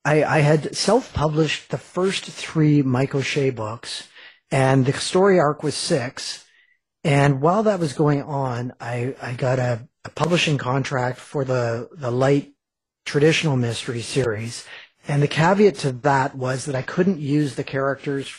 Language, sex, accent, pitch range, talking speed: English, male, American, 130-155 Hz, 155 wpm